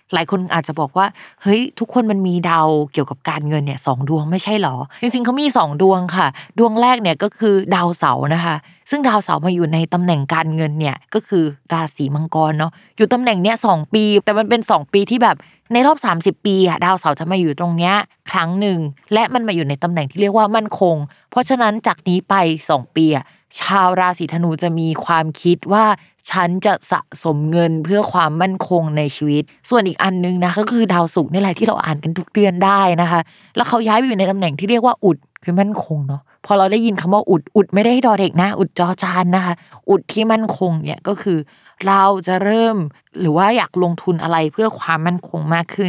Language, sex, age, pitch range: Thai, female, 20-39, 165-205 Hz